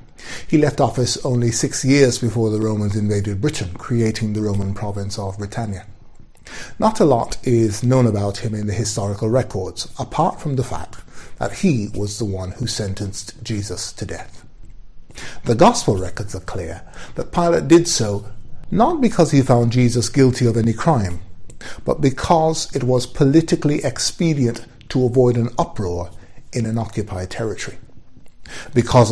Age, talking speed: 60-79, 155 wpm